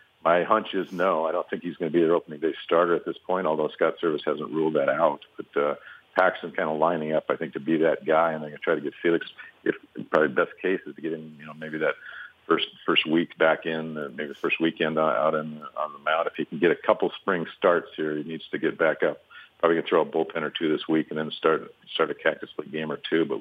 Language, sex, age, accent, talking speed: English, male, 50-69, American, 285 wpm